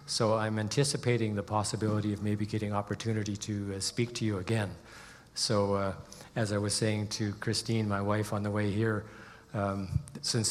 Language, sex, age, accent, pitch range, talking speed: English, male, 50-69, American, 105-120 Hz, 175 wpm